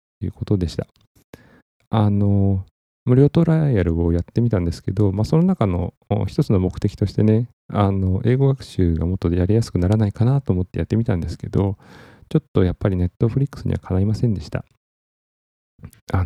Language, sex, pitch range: Japanese, male, 90-115 Hz